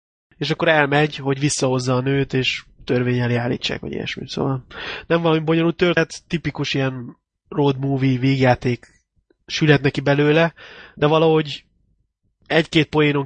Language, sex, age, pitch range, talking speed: Hungarian, male, 20-39, 130-150 Hz, 130 wpm